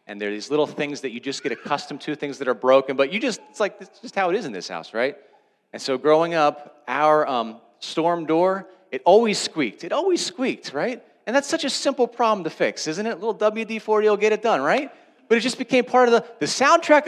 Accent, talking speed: American, 255 wpm